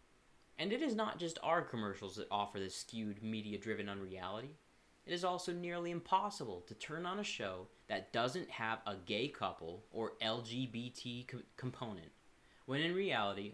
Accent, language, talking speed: American, English, 155 wpm